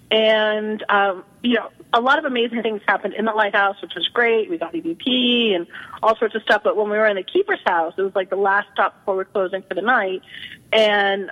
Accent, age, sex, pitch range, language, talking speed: American, 40-59, female, 190-235 Hz, English, 240 wpm